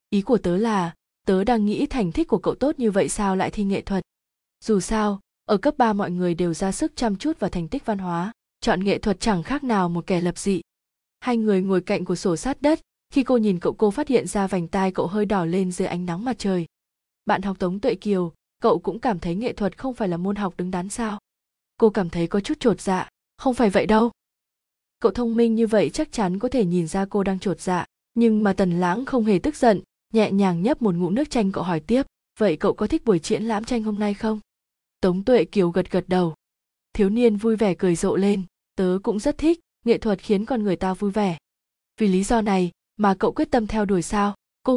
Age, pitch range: 20-39, 185-230 Hz